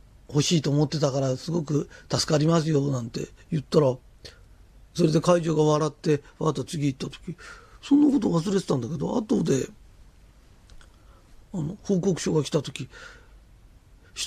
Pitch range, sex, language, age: 130-215 Hz, male, Japanese, 40-59